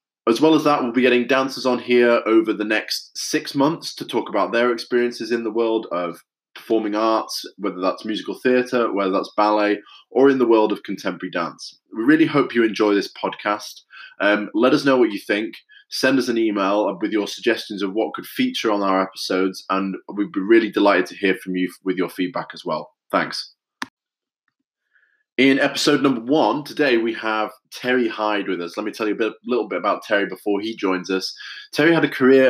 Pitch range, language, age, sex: 105-130 Hz, English, 20-39, male